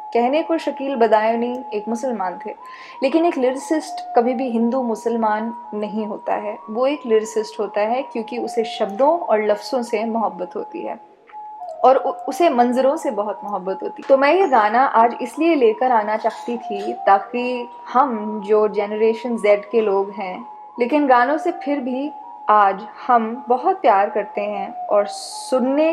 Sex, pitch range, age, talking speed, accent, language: female, 220-290 Hz, 10-29, 170 wpm, native, Hindi